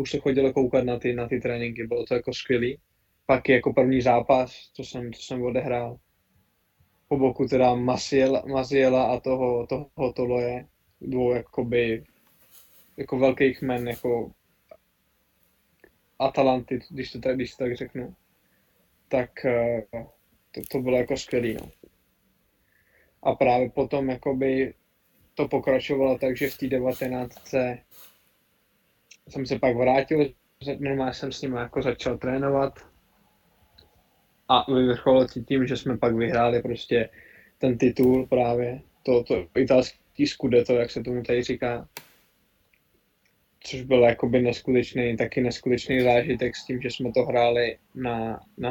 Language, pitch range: Czech, 120-130 Hz